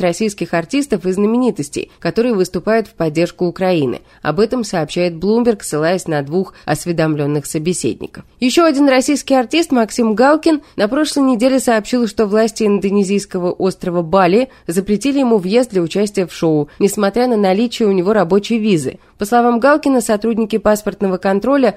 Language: Russian